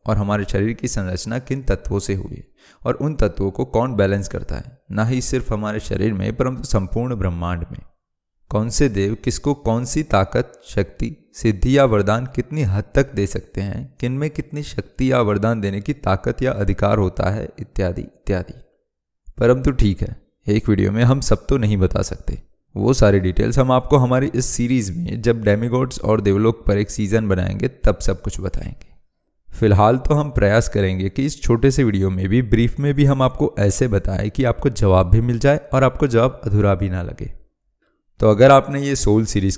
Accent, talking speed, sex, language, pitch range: native, 200 wpm, male, Hindi, 100-125 Hz